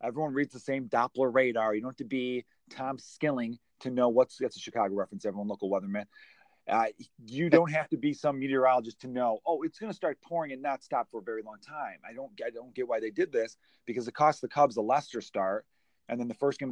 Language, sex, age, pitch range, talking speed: English, male, 30-49, 110-140 Hz, 250 wpm